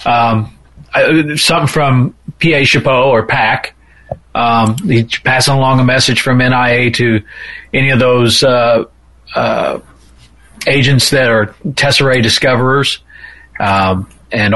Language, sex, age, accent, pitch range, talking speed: English, male, 40-59, American, 105-125 Hz, 110 wpm